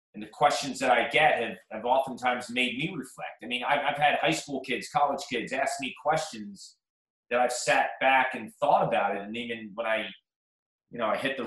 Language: English